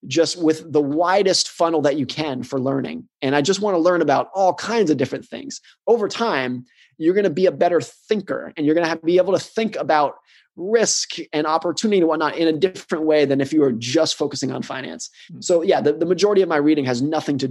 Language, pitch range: English, 140-185 Hz